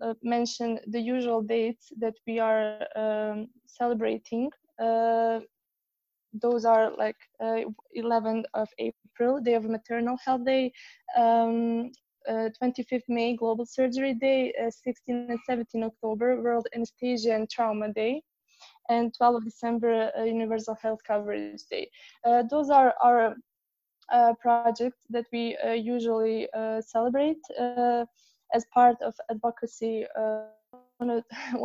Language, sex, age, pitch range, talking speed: English, female, 20-39, 225-250 Hz, 130 wpm